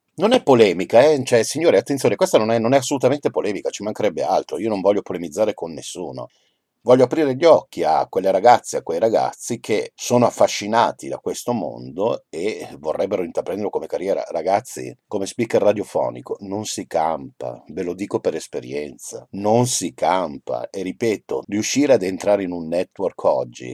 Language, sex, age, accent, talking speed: Italian, male, 50-69, native, 170 wpm